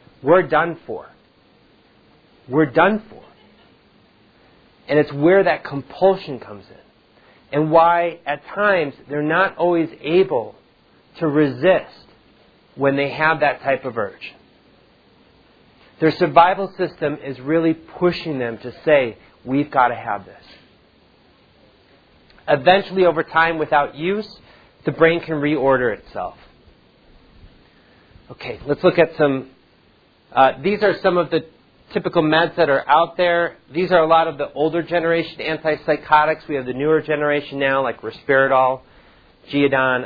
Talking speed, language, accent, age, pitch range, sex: 135 wpm, English, American, 40-59, 140-170 Hz, male